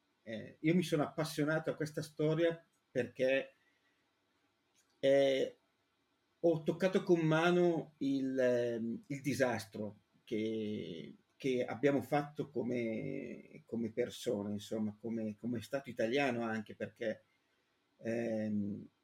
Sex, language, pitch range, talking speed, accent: male, Italian, 115-145 Hz, 105 wpm, native